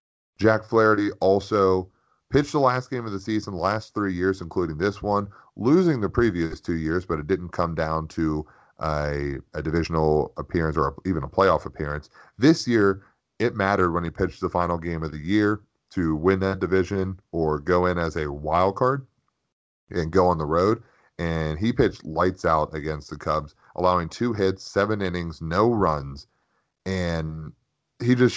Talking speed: 175 wpm